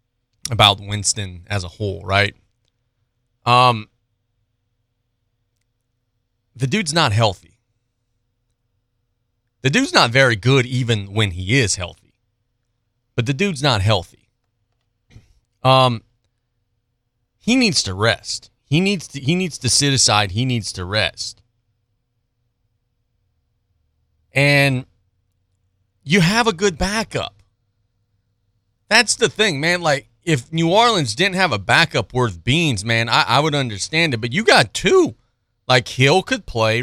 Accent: American